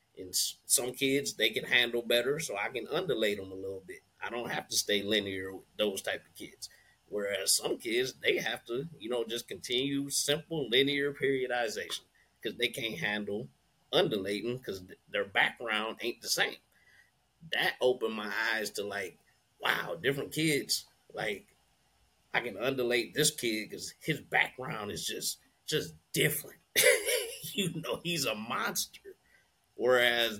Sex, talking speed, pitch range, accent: male, 155 wpm, 105-145 Hz, American